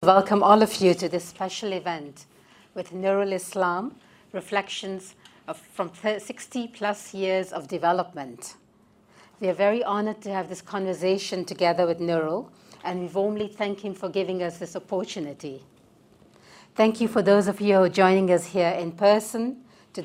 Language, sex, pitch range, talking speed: English, female, 180-205 Hz, 160 wpm